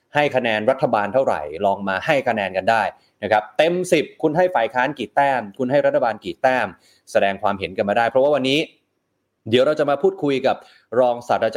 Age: 20-39